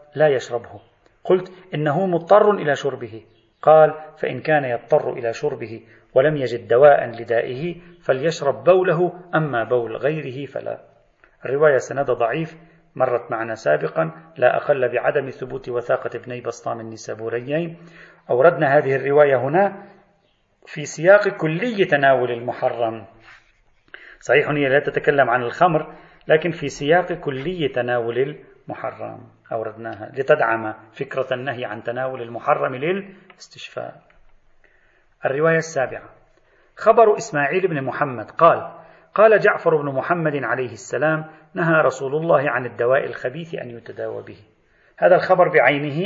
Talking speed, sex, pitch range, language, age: 120 wpm, male, 125-175 Hz, Arabic, 40-59